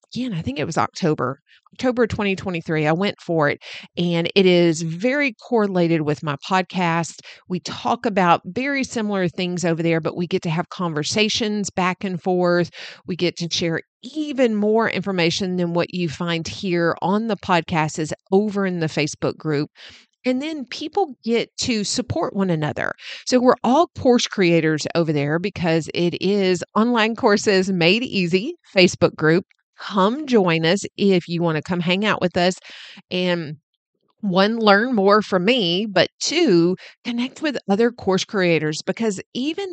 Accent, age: American, 40-59